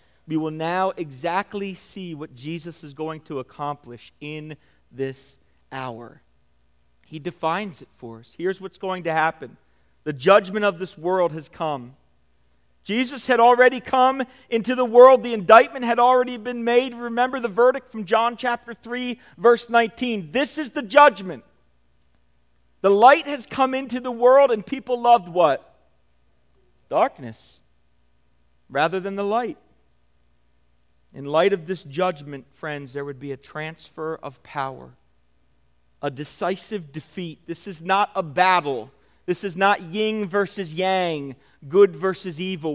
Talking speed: 145 wpm